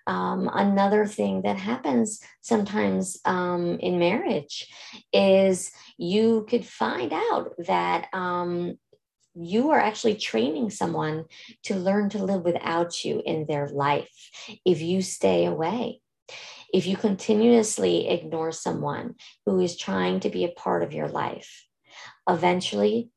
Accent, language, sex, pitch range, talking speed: American, English, female, 145-220 Hz, 130 wpm